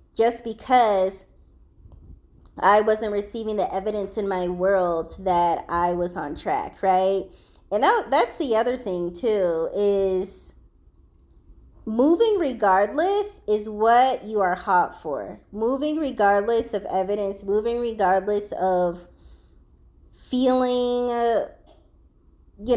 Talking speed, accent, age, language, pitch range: 105 wpm, American, 20-39, English, 180-230 Hz